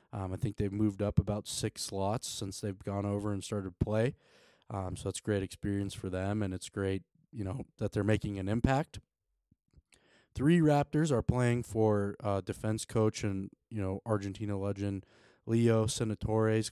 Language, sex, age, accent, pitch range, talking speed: English, male, 20-39, American, 100-115 Hz, 175 wpm